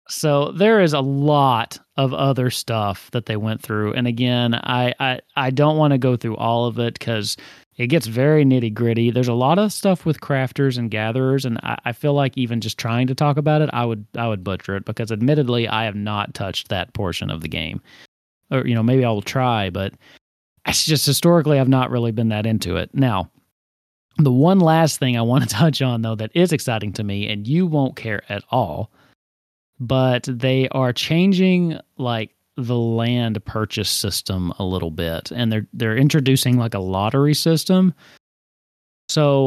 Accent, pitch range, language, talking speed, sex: American, 110-140 Hz, English, 200 wpm, male